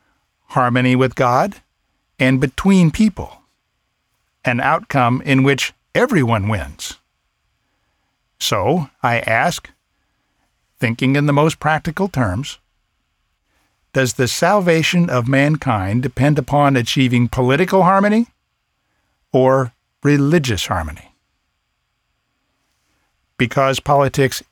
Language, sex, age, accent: English, male, 60-79, American